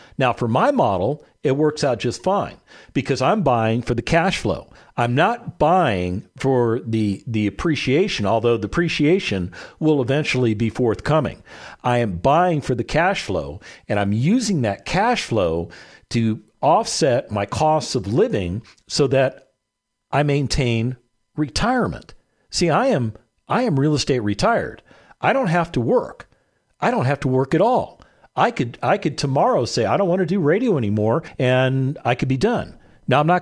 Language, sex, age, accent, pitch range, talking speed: English, male, 50-69, American, 110-145 Hz, 170 wpm